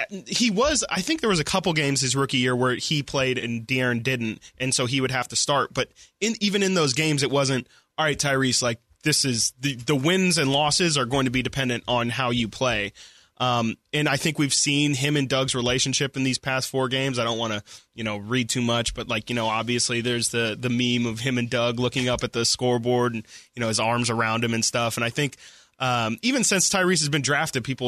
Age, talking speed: 20-39, 250 wpm